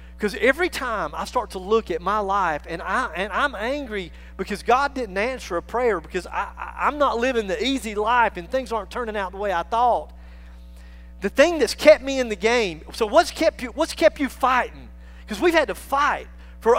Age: 40-59